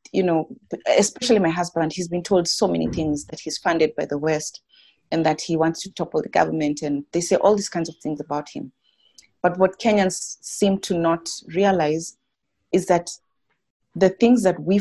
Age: 30-49